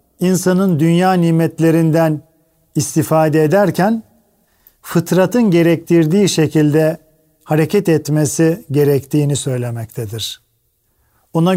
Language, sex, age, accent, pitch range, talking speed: Turkish, male, 40-59, native, 150-185 Hz, 65 wpm